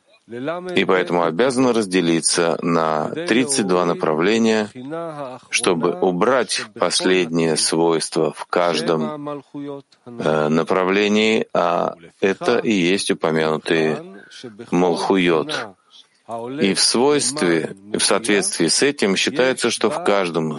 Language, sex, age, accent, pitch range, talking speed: Russian, male, 40-59, native, 85-130 Hz, 95 wpm